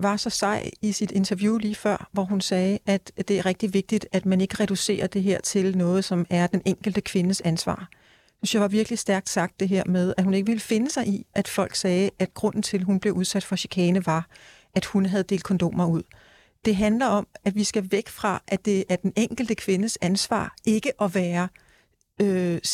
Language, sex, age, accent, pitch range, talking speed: Danish, female, 40-59, native, 190-220 Hz, 220 wpm